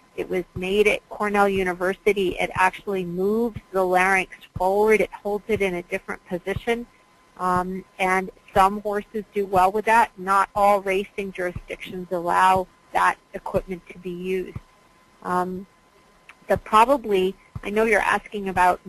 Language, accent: English, American